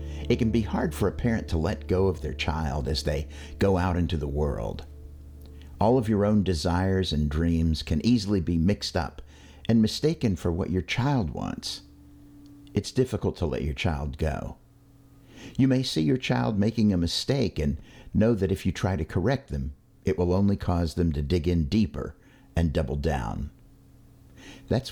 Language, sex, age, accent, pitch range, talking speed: English, male, 60-79, American, 80-120 Hz, 185 wpm